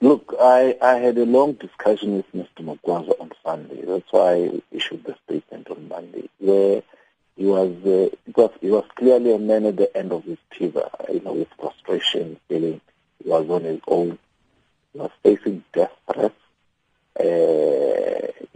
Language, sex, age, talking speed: English, male, 50-69, 165 wpm